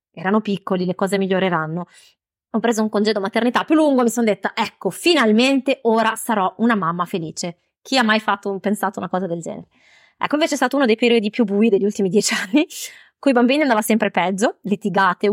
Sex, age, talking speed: female, 20-39, 205 wpm